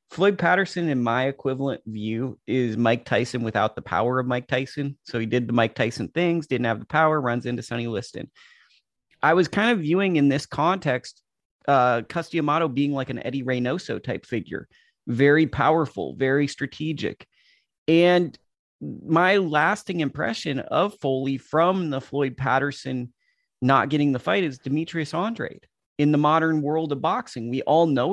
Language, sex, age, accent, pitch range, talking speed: English, male, 30-49, American, 130-165 Hz, 165 wpm